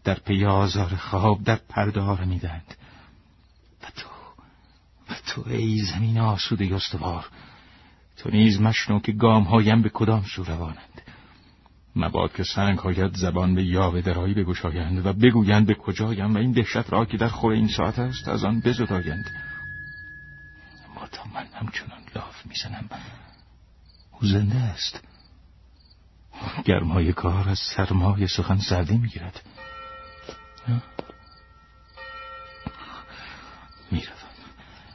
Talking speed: 120 wpm